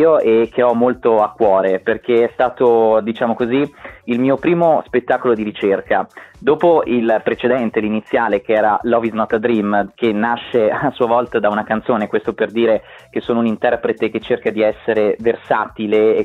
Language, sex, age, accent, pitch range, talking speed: Italian, male, 20-39, native, 110-125 Hz, 180 wpm